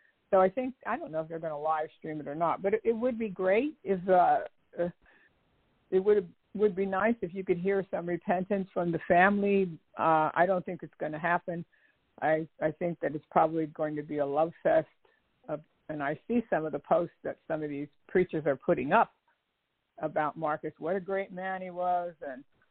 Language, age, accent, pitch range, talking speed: English, 60-79, American, 155-190 Hz, 220 wpm